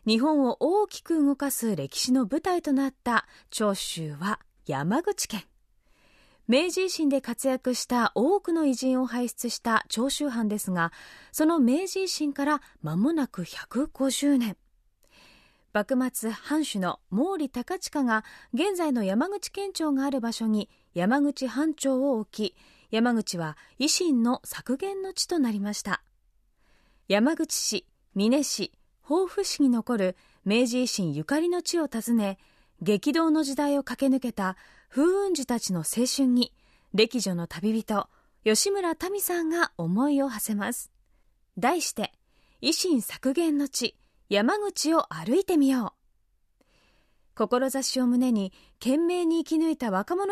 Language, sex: Japanese, female